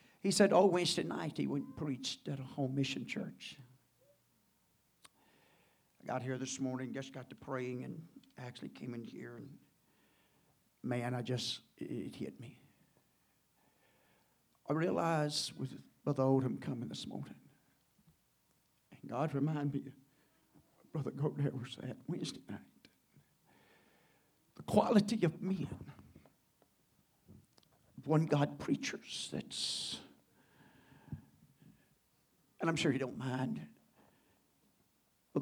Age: 60-79